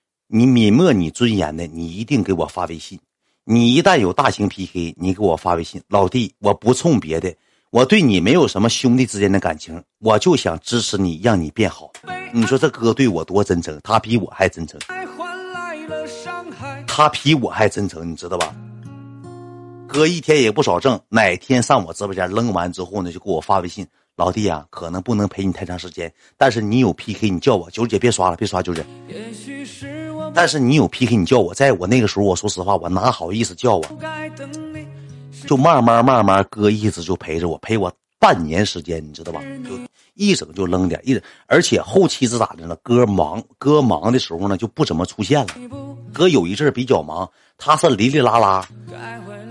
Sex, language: male, Chinese